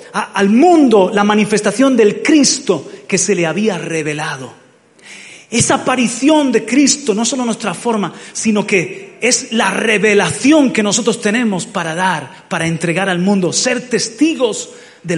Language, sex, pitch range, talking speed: Spanish, male, 180-230 Hz, 140 wpm